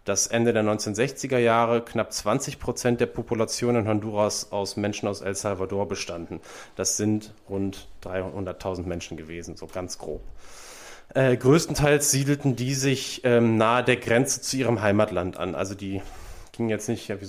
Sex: male